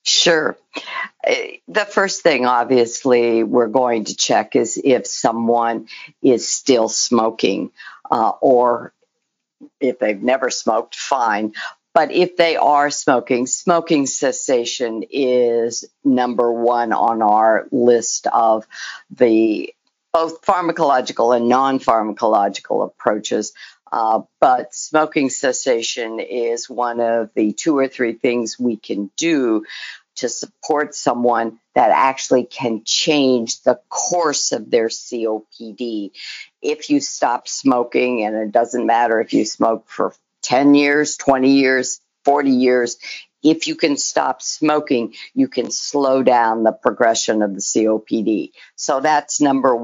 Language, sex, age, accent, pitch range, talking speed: English, female, 50-69, American, 115-150 Hz, 125 wpm